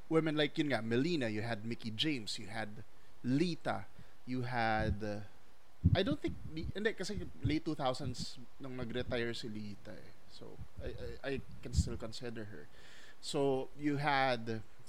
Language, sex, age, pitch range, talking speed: English, male, 20-39, 110-160 Hz, 135 wpm